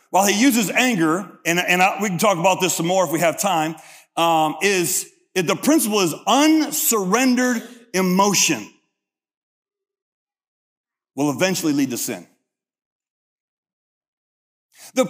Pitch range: 180-255 Hz